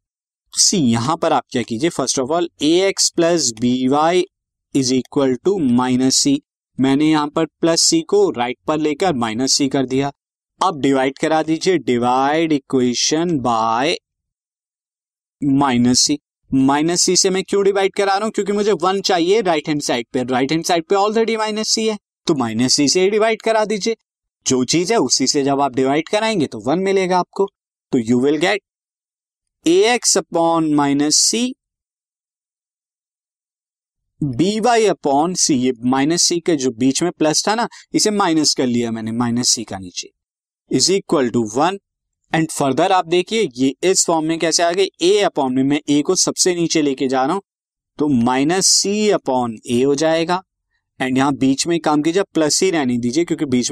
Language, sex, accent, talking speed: Hindi, male, native, 175 wpm